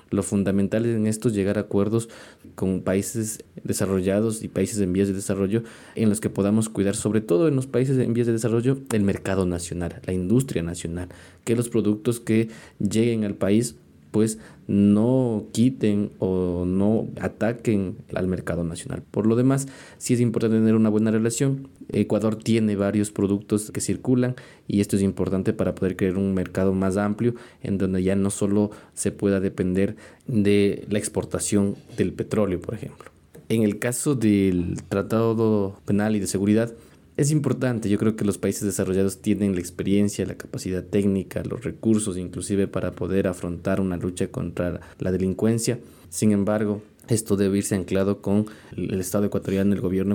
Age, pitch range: 20-39, 95-110 Hz